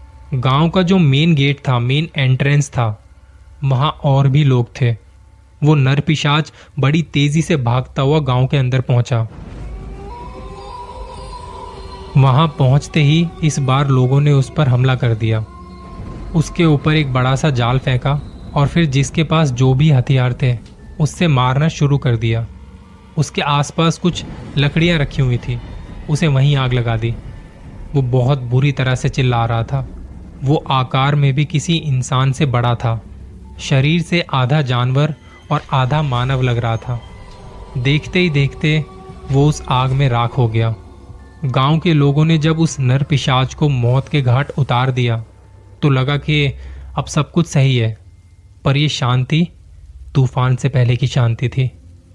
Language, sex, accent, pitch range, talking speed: Hindi, male, native, 115-150 Hz, 155 wpm